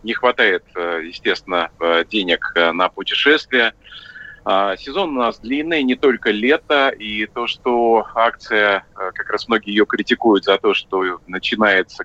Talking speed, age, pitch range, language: 130 wpm, 30-49, 100-130 Hz, Russian